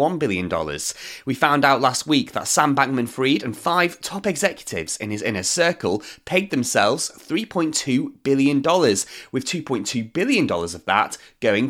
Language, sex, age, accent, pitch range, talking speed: English, male, 30-49, British, 110-180 Hz, 160 wpm